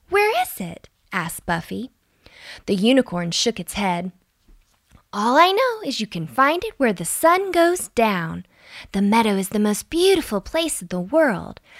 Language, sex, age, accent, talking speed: English, female, 20-39, American, 170 wpm